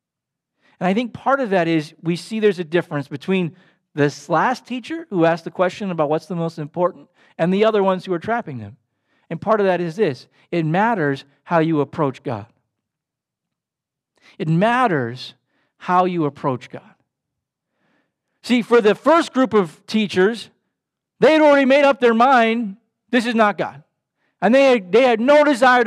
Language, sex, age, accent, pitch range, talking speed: English, male, 50-69, American, 170-250 Hz, 175 wpm